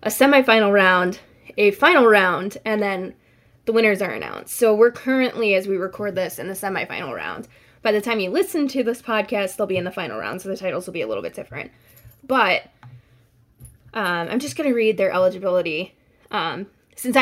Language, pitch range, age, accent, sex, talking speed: English, 195-260 Hz, 20-39, American, female, 195 wpm